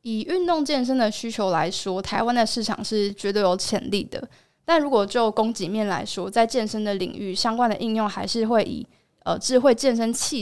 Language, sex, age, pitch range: Chinese, female, 20-39, 195-240 Hz